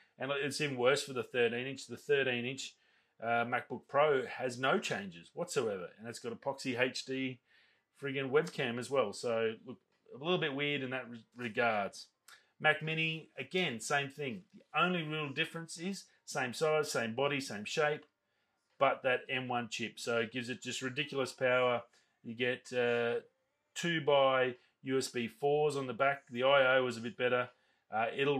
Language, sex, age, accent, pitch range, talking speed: English, male, 30-49, Australian, 120-145 Hz, 165 wpm